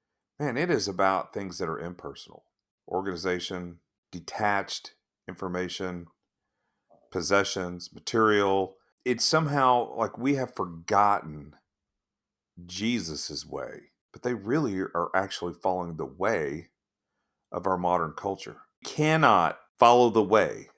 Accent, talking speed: American, 110 wpm